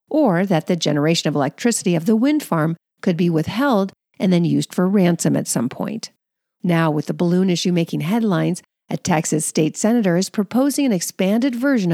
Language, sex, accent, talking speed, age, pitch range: English, female, American, 185 wpm, 50-69, 165-220 Hz